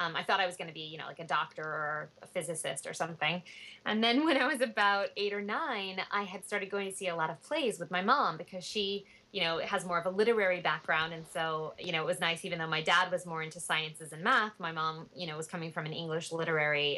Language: English